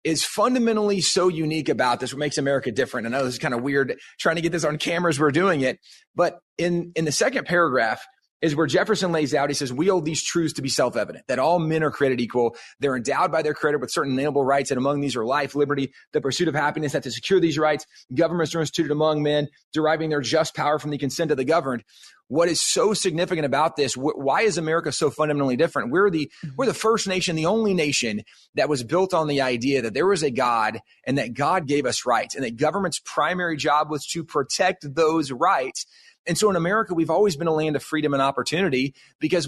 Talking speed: 235 wpm